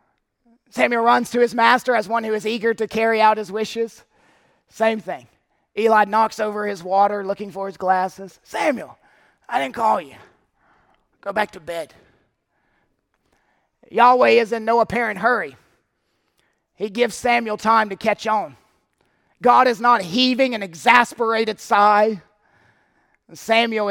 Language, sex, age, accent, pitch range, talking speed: English, male, 30-49, American, 200-265 Hz, 140 wpm